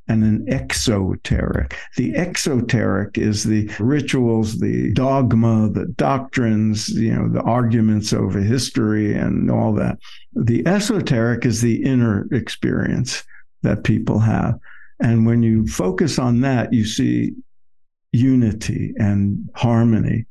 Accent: American